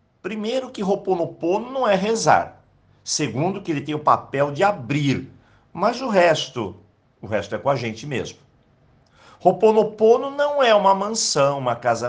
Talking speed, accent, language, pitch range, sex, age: 155 wpm, Brazilian, Portuguese, 115-175 Hz, male, 50-69